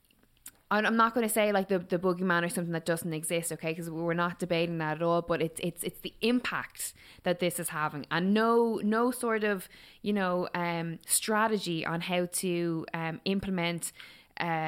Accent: Irish